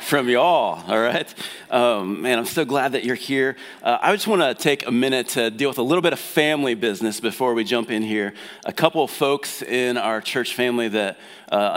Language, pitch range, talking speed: English, 110-130 Hz, 225 wpm